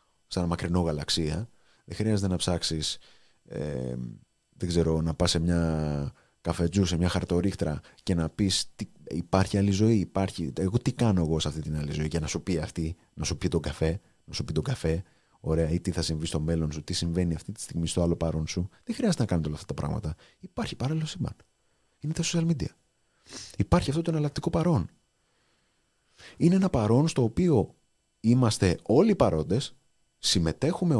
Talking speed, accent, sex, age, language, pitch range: 185 wpm, native, male, 30-49, Greek, 85-135 Hz